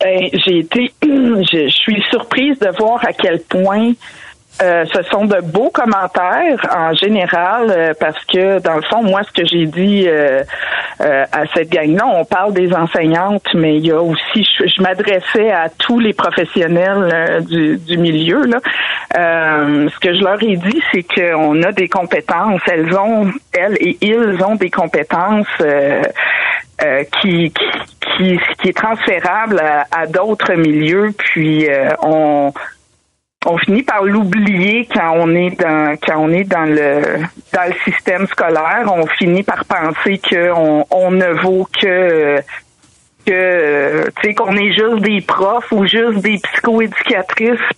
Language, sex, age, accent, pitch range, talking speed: French, female, 50-69, Canadian, 160-210 Hz, 165 wpm